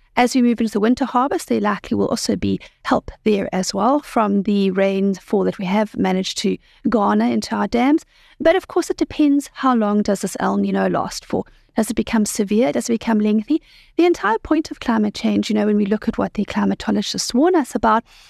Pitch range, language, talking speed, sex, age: 205-255 Hz, English, 215 wpm, female, 40-59